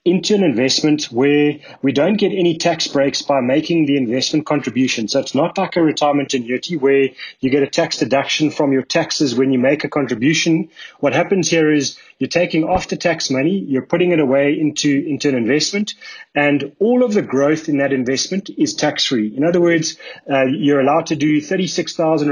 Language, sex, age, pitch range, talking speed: English, male, 30-49, 135-170 Hz, 195 wpm